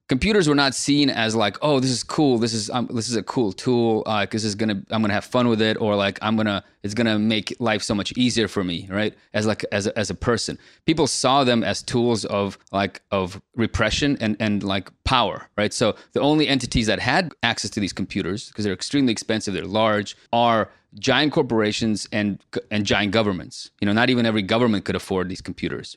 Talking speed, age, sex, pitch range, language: 230 wpm, 30-49, male, 100-120 Hz, English